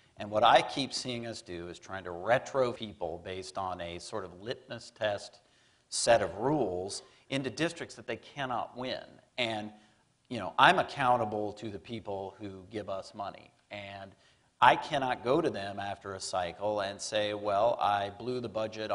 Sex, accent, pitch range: male, American, 100-120 Hz